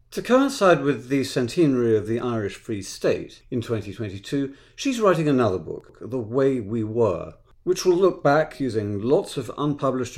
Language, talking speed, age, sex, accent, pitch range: English, 165 wpm, 50-69, male, British, 110-145 Hz